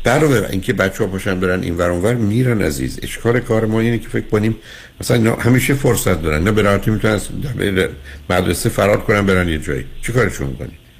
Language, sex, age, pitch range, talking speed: Persian, male, 60-79, 75-110 Hz, 190 wpm